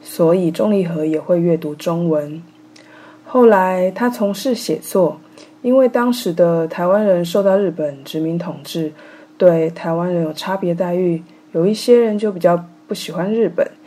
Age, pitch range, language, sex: 20-39, 165-215 Hz, Chinese, female